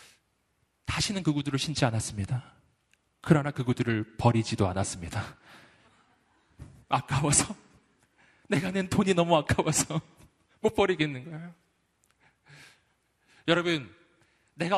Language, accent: Korean, native